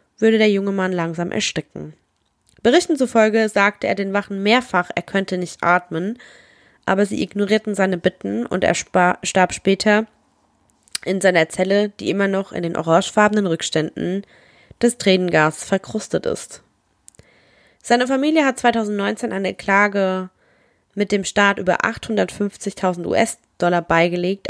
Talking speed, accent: 130 wpm, German